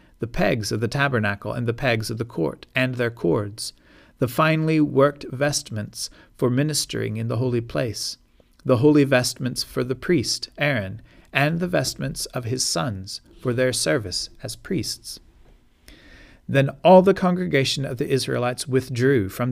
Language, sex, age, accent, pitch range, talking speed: English, male, 40-59, American, 115-140 Hz, 155 wpm